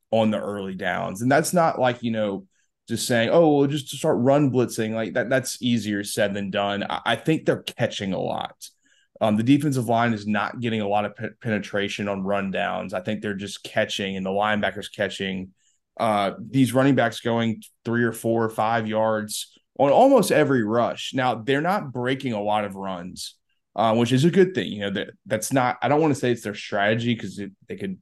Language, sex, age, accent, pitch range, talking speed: English, male, 20-39, American, 105-125 Hz, 215 wpm